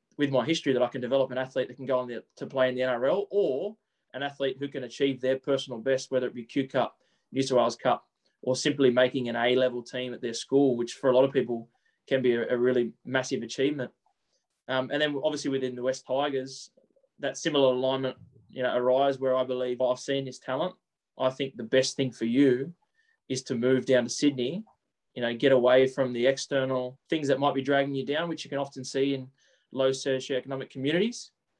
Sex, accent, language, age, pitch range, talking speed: male, Australian, English, 20-39, 125-135 Hz, 220 wpm